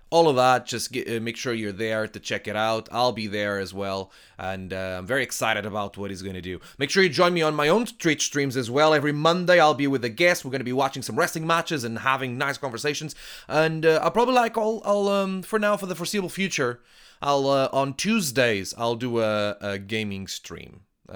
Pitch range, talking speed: 110-160 Hz, 240 wpm